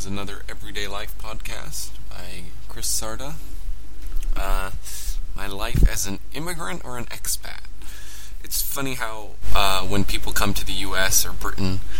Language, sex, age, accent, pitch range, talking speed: English, male, 20-39, American, 95-110 Hz, 140 wpm